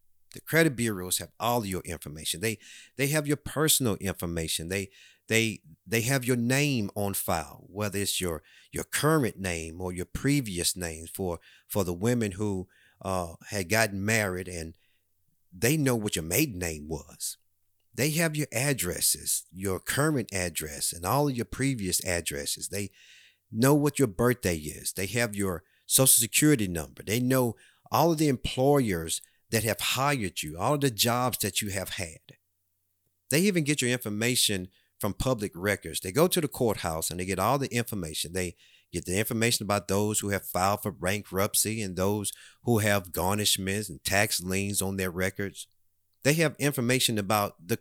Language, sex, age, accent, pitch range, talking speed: English, male, 50-69, American, 90-125 Hz, 170 wpm